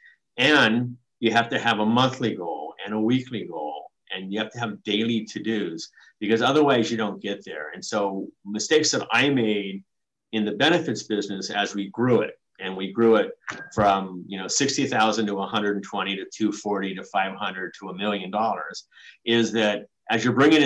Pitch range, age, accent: 100-125 Hz, 50-69, American